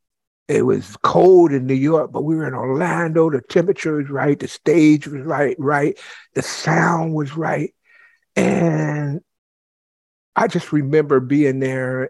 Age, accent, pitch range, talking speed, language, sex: 50-69, American, 125-155 Hz, 150 wpm, English, male